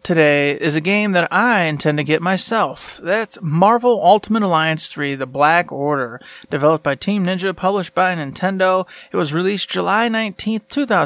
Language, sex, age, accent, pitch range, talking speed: English, male, 30-49, American, 150-190 Hz, 165 wpm